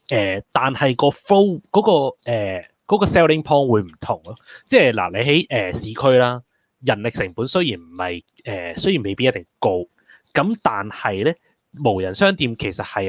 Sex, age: male, 20-39